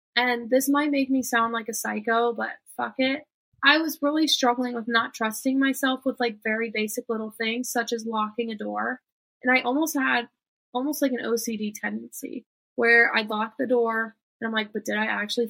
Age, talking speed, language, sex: 20-39, 200 wpm, English, female